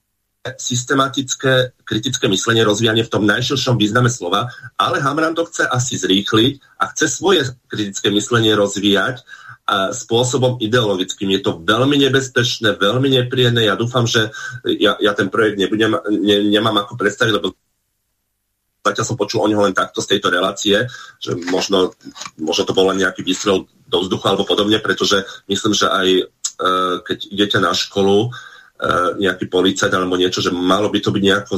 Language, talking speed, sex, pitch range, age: Slovak, 165 wpm, male, 100-120 Hz, 40-59